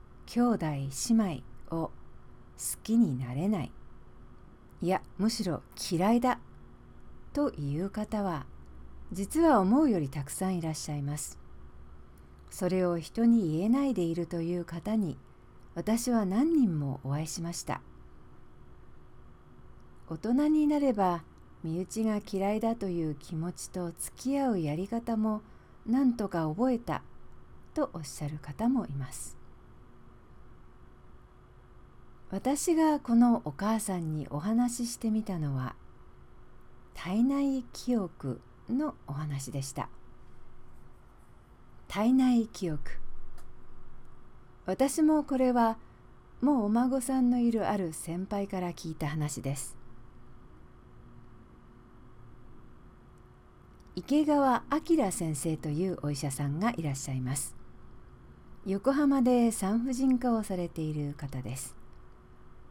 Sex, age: female, 50-69